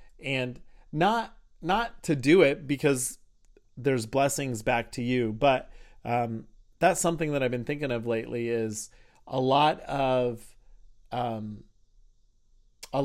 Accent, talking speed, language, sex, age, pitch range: American, 130 wpm, English, male, 30-49, 115-135 Hz